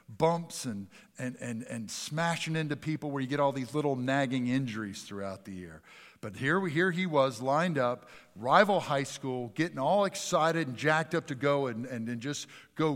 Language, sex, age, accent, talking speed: English, male, 50-69, American, 190 wpm